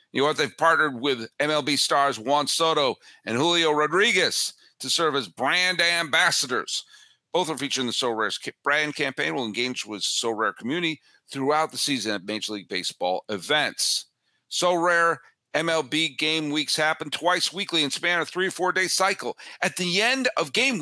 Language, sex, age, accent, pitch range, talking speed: English, male, 50-69, American, 130-180 Hz, 180 wpm